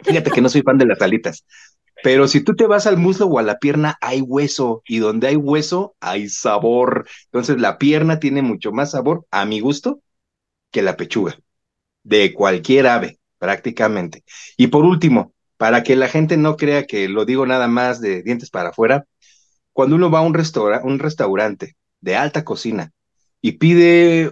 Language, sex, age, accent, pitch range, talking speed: Spanish, male, 30-49, Mexican, 120-165 Hz, 185 wpm